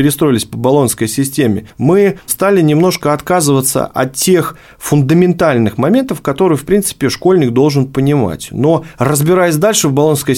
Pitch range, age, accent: 120-150 Hz, 30-49, native